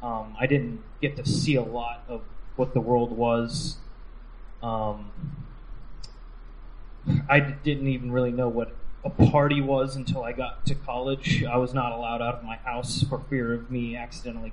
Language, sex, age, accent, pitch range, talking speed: English, male, 20-39, American, 115-140 Hz, 175 wpm